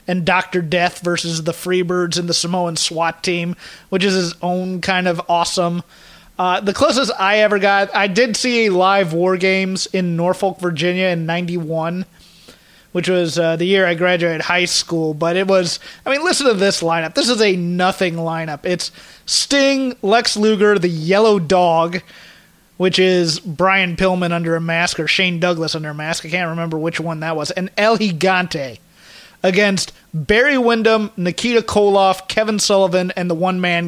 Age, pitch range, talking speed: 30-49, 170-195 Hz, 180 wpm